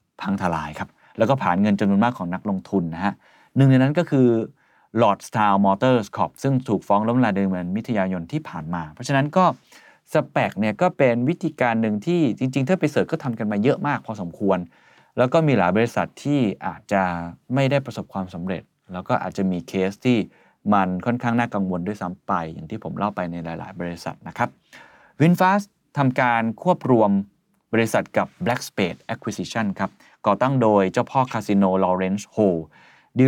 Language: Thai